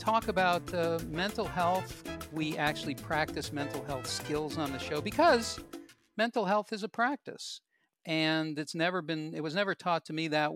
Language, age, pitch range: English, 50-69, 130-165 Hz